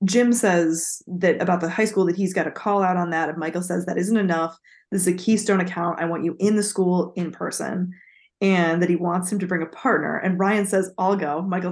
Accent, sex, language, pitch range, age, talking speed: American, female, English, 170-200 Hz, 20-39, 250 wpm